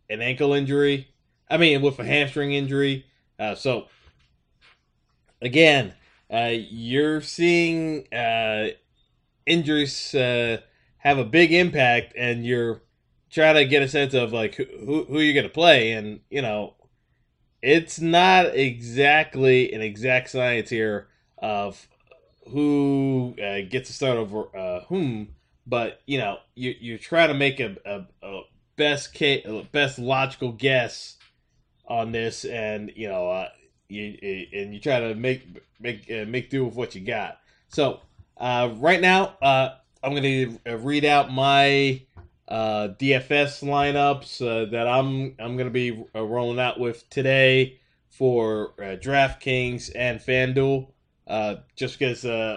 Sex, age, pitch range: male, 20-39, 115-140 Hz